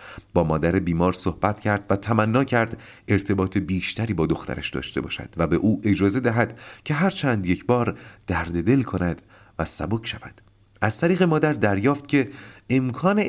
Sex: male